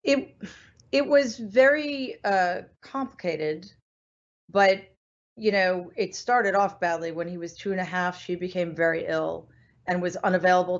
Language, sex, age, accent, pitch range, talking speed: English, female, 40-59, American, 175-225 Hz, 150 wpm